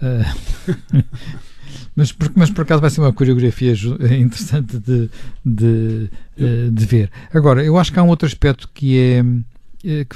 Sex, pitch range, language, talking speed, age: male, 115-140 Hz, Portuguese, 140 wpm, 60-79